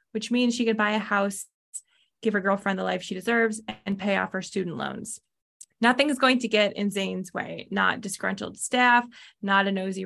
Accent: American